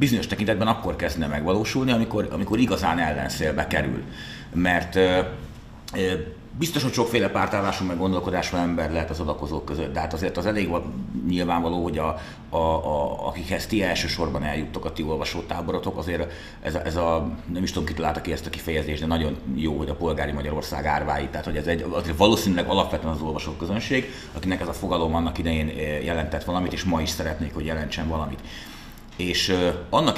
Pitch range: 75-90 Hz